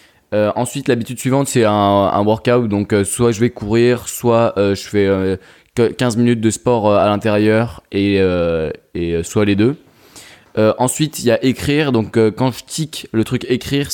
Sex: male